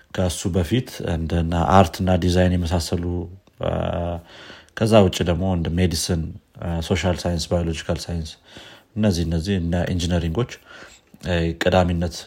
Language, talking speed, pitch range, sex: Amharic, 90 wpm, 85-100 Hz, male